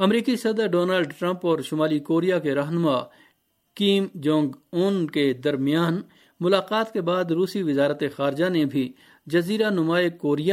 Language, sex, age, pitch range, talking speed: Urdu, male, 50-69, 145-190 Hz, 140 wpm